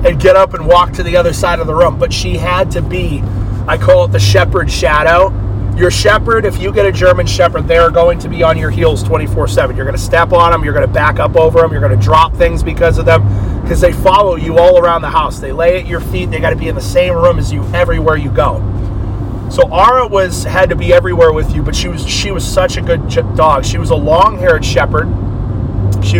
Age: 30-49